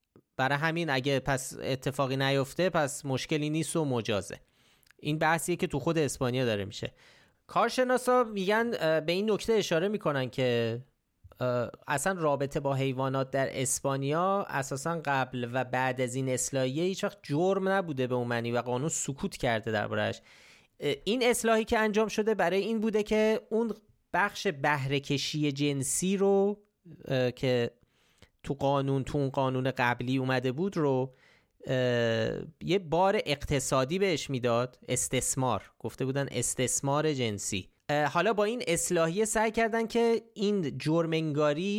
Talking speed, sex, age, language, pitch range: 135 wpm, male, 30-49, Persian, 125-180 Hz